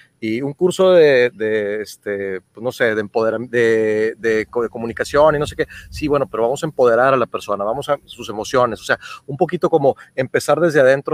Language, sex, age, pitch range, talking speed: Spanish, male, 40-59, 115-160 Hz, 195 wpm